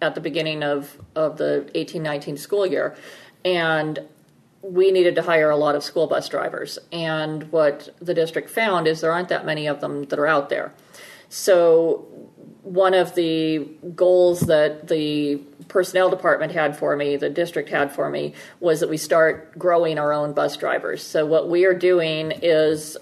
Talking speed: 180 wpm